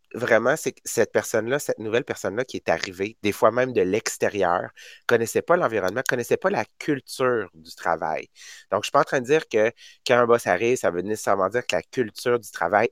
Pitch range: 105-135 Hz